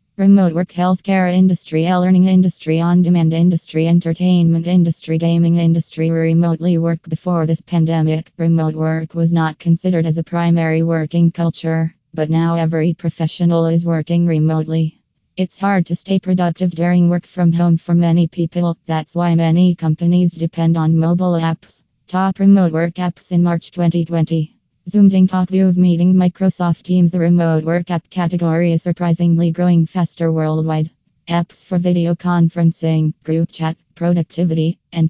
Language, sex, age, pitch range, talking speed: English, female, 20-39, 160-175 Hz, 150 wpm